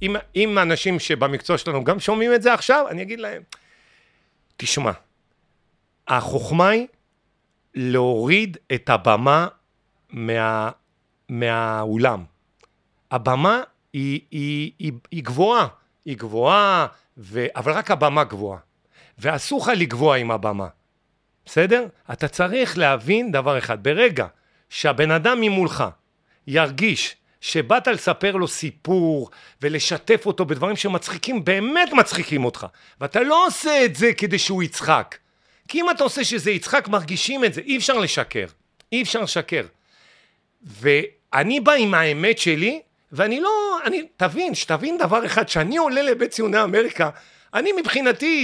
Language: Hebrew